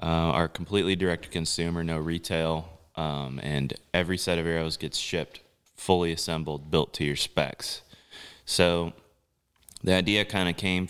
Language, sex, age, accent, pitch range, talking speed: English, male, 20-39, American, 80-95 Hz, 155 wpm